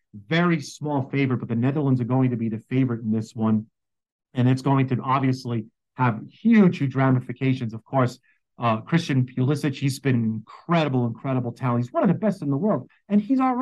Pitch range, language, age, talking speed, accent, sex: 120-155 Hz, English, 40-59, 200 wpm, American, male